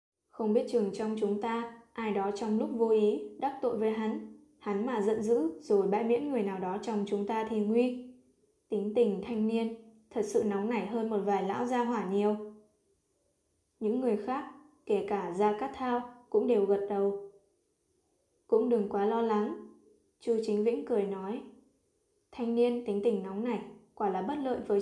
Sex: female